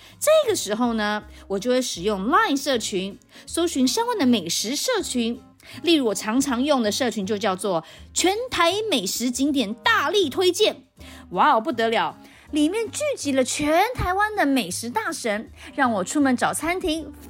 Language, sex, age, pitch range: Chinese, female, 30-49, 225-340 Hz